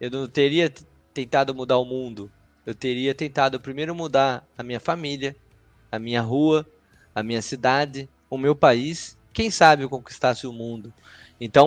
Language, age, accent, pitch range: Portuguese, 20-39, Brazilian, 115-160 Hz